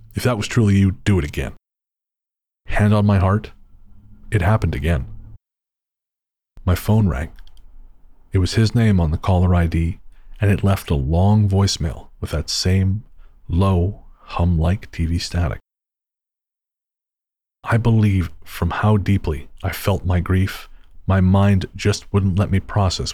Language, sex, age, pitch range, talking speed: English, male, 40-59, 85-105 Hz, 145 wpm